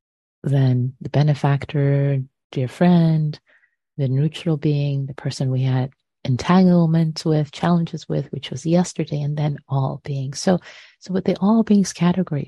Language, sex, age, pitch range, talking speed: English, female, 30-49, 130-165 Hz, 145 wpm